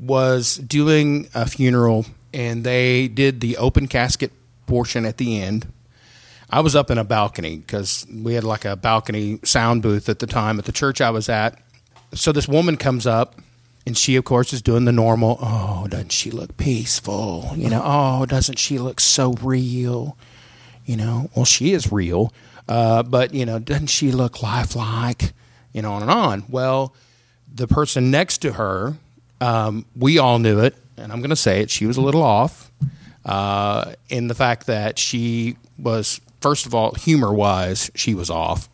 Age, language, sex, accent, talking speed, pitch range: 40-59, English, male, American, 185 wpm, 115-135 Hz